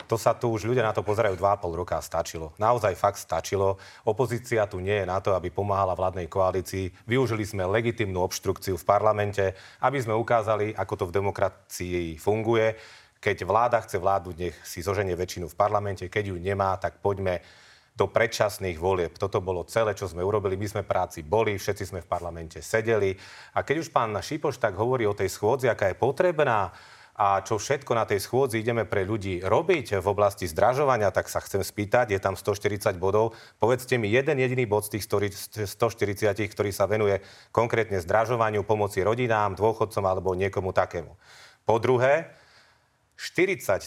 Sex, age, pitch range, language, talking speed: male, 30-49, 95-110 Hz, Slovak, 175 wpm